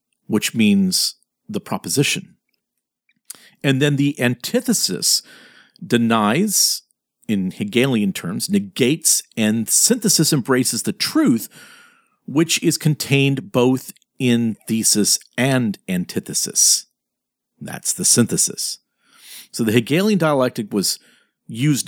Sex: male